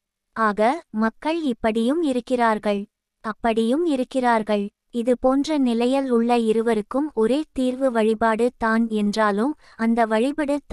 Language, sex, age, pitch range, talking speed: Tamil, female, 20-39, 220-265 Hz, 95 wpm